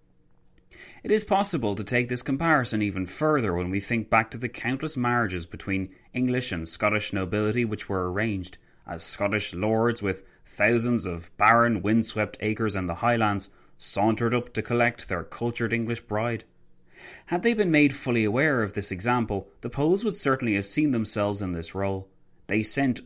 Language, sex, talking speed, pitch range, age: English, male, 170 wpm, 100-125 Hz, 30-49